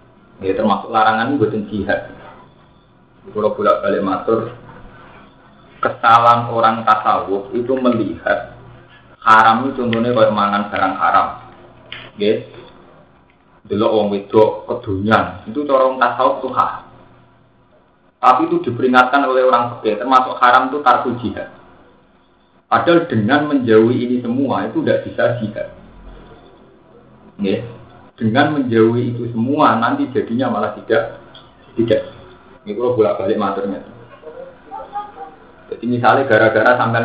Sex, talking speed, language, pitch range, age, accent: male, 110 wpm, Indonesian, 110-130 Hz, 30-49, native